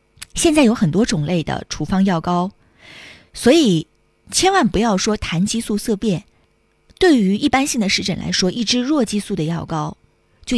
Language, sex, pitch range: Chinese, female, 175-235 Hz